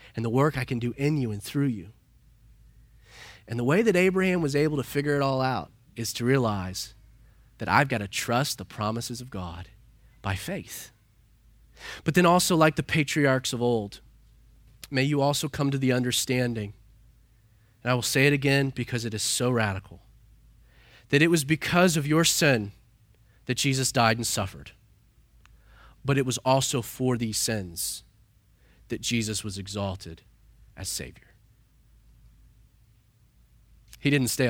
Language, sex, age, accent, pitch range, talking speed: English, male, 30-49, American, 110-130 Hz, 160 wpm